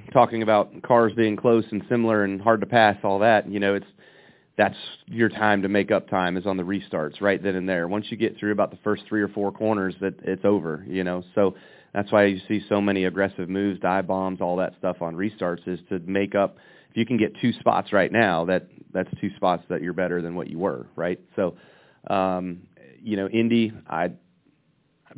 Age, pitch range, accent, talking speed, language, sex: 30-49, 95-110 Hz, American, 220 wpm, English, male